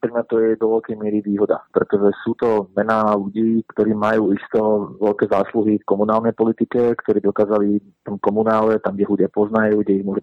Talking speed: 175 wpm